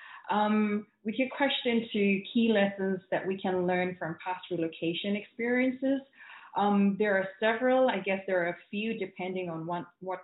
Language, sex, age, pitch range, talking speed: English, female, 20-39, 170-200 Hz, 170 wpm